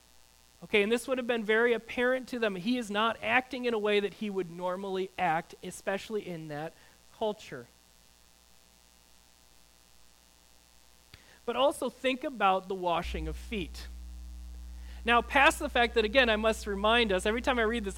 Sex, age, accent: male, 30-49, American